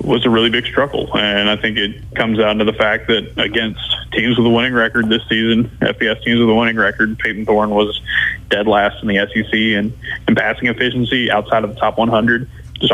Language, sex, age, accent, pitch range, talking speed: English, male, 20-39, American, 110-120 Hz, 225 wpm